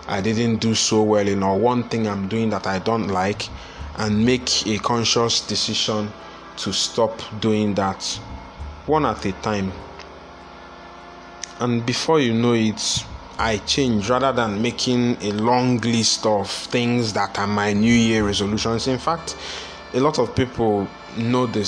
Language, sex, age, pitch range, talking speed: English, male, 20-39, 95-120 Hz, 160 wpm